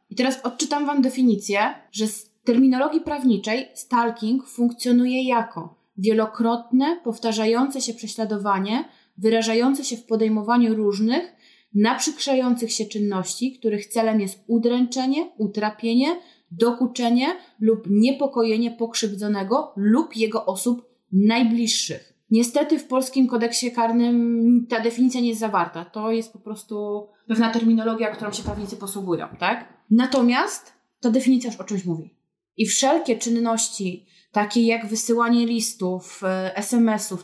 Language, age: Polish, 20-39